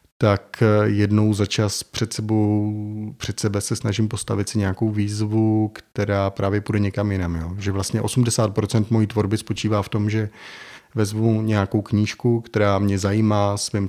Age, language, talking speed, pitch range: 30-49, Slovak, 155 wpm, 100-110 Hz